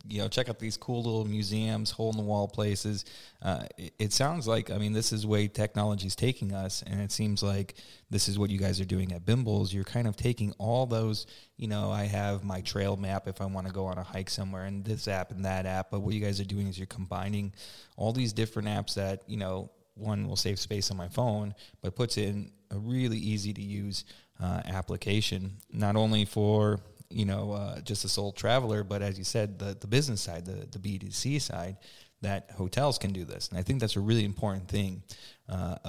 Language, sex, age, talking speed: English, male, 30-49, 220 wpm